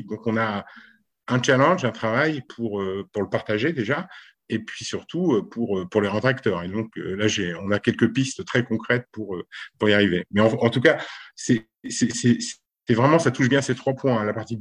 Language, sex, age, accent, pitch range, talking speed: French, male, 50-69, French, 110-130 Hz, 220 wpm